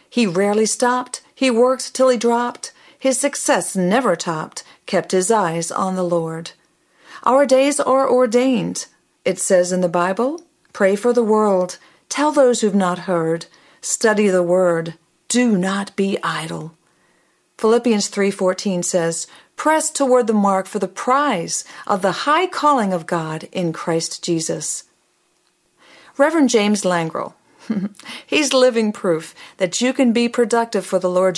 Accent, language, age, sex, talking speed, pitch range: American, English, 50-69, female, 145 wpm, 180-250 Hz